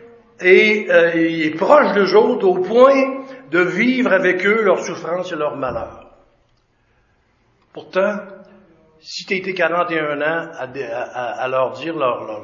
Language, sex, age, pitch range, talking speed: French, male, 60-79, 140-190 Hz, 150 wpm